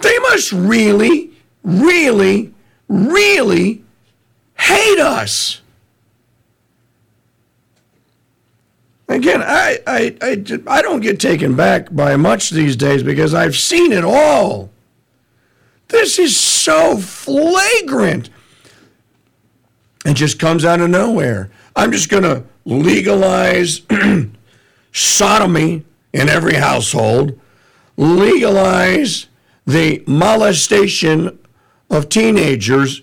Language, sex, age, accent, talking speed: English, male, 50-69, American, 90 wpm